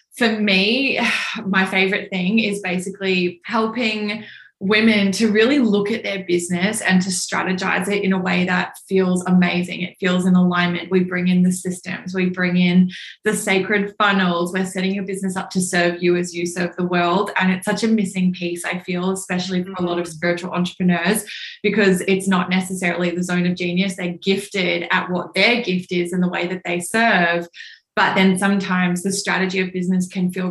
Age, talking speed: 20-39, 195 wpm